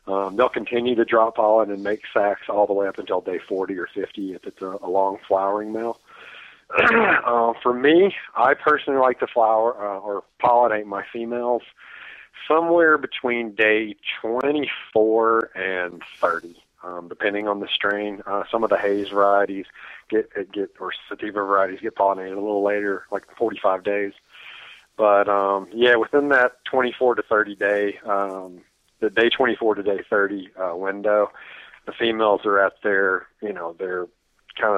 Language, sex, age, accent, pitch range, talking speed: English, male, 40-59, American, 100-115 Hz, 165 wpm